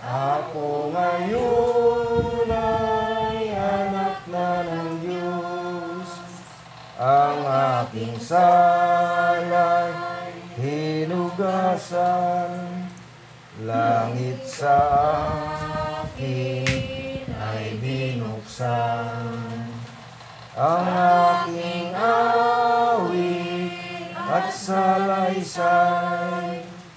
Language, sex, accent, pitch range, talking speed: English, male, Filipino, 145-195 Hz, 45 wpm